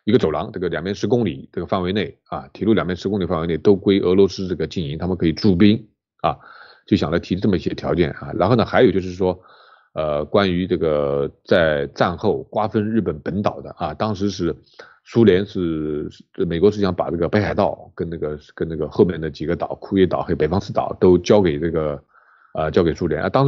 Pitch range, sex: 85-110 Hz, male